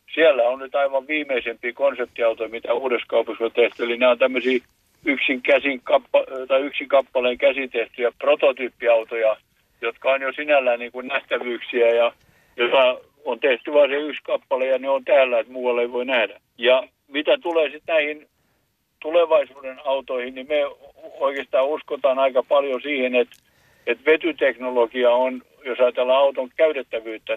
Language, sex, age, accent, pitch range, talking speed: Finnish, male, 60-79, native, 120-145 Hz, 145 wpm